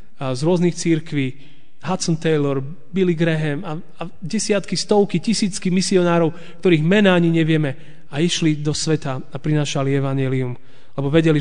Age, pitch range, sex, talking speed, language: 30-49, 145-175 Hz, male, 140 wpm, Slovak